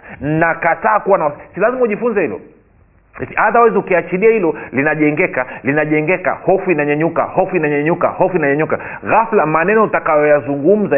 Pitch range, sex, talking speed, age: 145-195 Hz, male, 120 wpm, 40-59